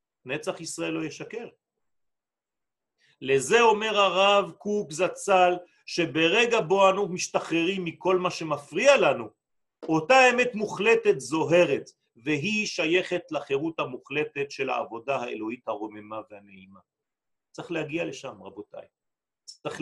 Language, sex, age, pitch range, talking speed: French, male, 40-59, 155-220 Hz, 105 wpm